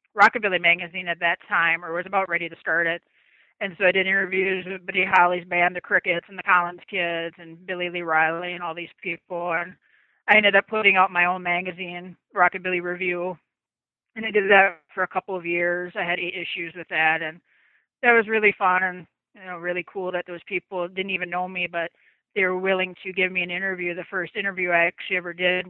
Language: English